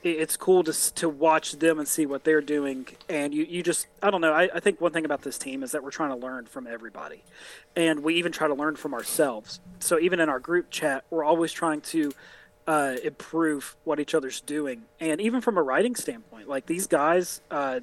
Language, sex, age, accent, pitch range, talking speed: English, male, 30-49, American, 150-170 Hz, 230 wpm